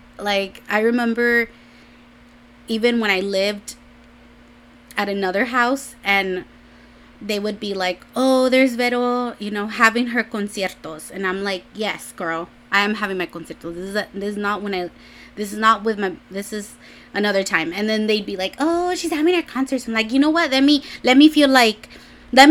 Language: English